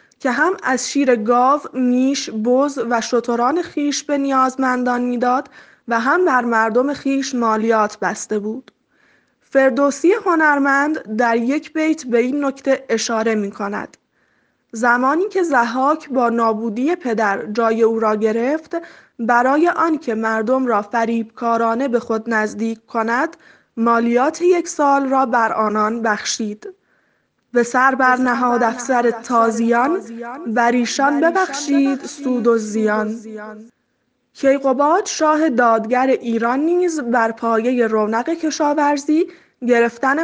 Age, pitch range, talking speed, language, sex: 10-29, 230-295 Hz, 120 wpm, Persian, female